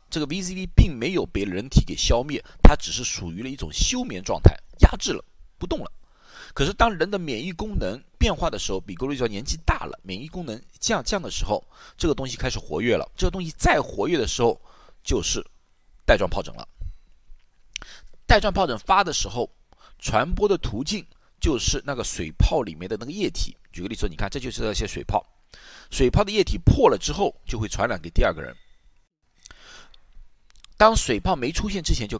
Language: Chinese